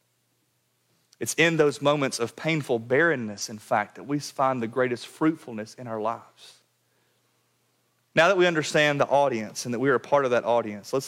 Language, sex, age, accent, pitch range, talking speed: English, male, 30-49, American, 125-170 Hz, 185 wpm